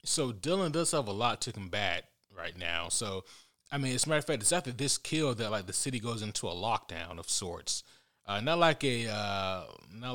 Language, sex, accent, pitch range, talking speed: English, male, American, 100-125 Hz, 225 wpm